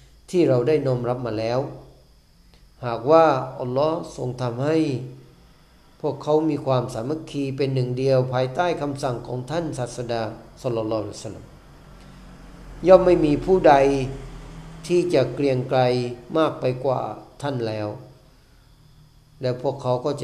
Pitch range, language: 115-145 Hz, Thai